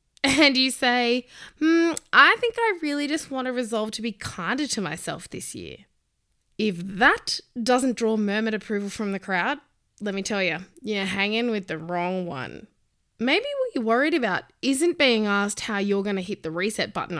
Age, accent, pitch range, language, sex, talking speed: 20-39, Australian, 195-285 Hz, English, female, 190 wpm